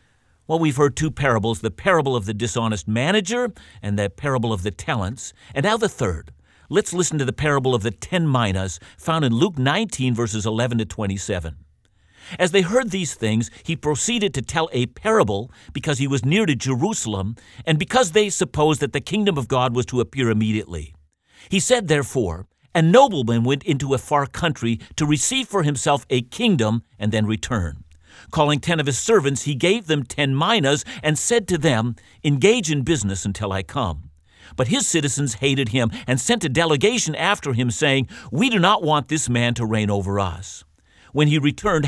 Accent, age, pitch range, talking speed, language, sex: American, 50-69, 110-165 Hz, 190 wpm, English, male